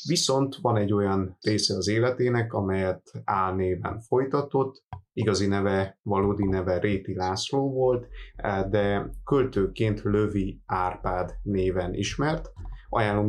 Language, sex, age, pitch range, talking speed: Hungarian, male, 30-49, 100-115 Hz, 110 wpm